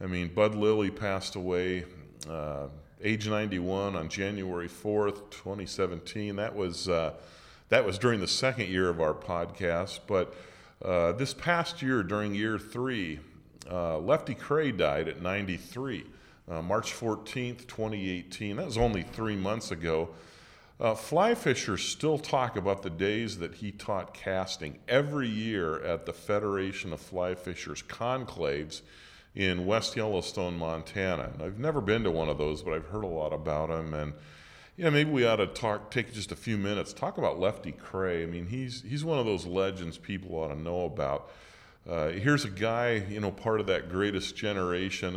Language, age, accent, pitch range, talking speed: English, 40-59, American, 85-110 Hz, 170 wpm